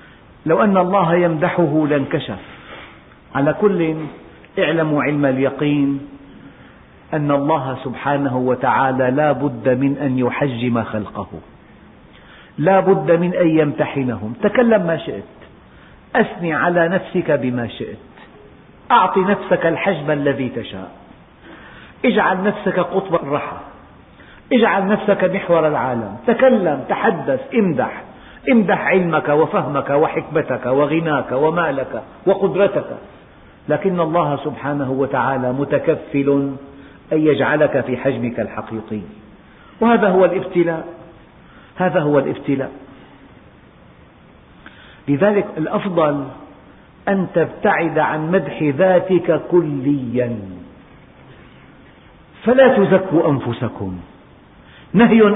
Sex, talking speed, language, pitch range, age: male, 90 wpm, Arabic, 135-185 Hz, 50-69